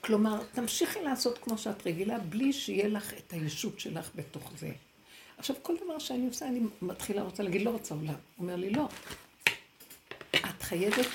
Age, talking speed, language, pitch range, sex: 60-79, 165 wpm, Hebrew, 170-220 Hz, female